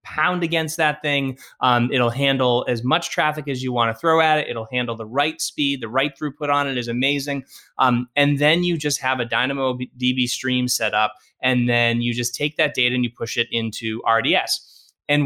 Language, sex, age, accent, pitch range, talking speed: English, male, 20-39, American, 120-145 Hz, 215 wpm